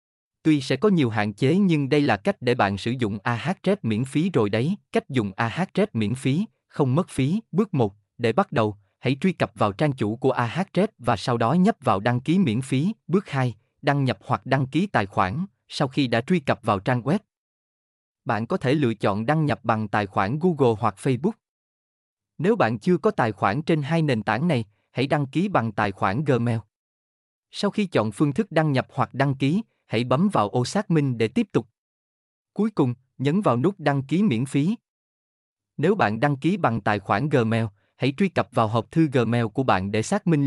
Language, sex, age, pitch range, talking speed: Vietnamese, male, 20-39, 115-160 Hz, 215 wpm